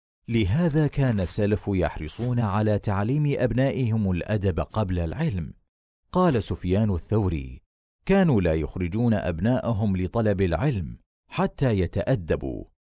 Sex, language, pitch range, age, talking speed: male, Arabic, 90-130 Hz, 40-59, 100 wpm